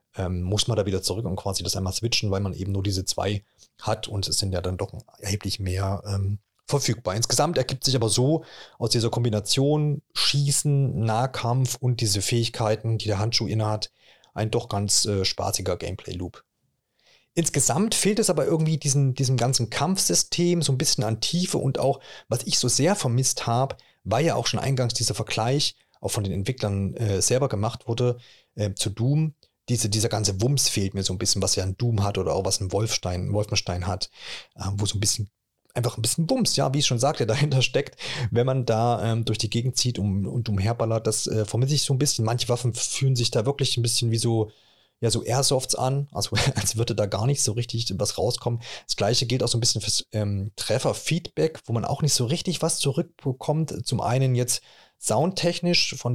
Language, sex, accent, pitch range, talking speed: German, male, German, 105-135 Hz, 205 wpm